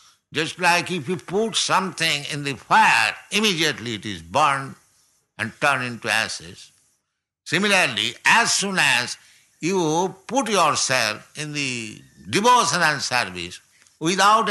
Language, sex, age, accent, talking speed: English, male, 60-79, Indian, 120 wpm